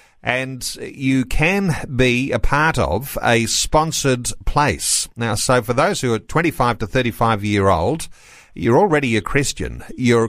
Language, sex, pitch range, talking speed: English, male, 110-135 Hz, 140 wpm